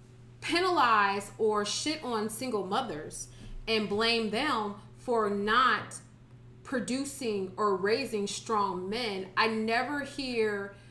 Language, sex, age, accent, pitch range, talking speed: English, female, 30-49, American, 200-255 Hz, 105 wpm